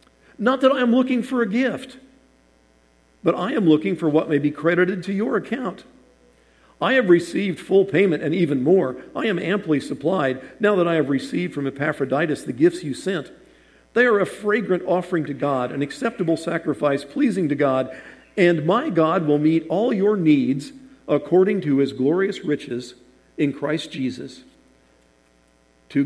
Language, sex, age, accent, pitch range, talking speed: English, male, 50-69, American, 130-200 Hz, 170 wpm